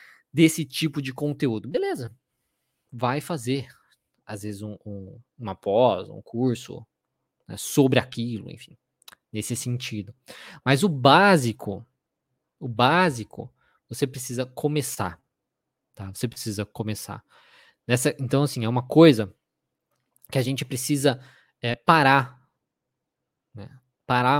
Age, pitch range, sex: 20-39, 115-150 Hz, male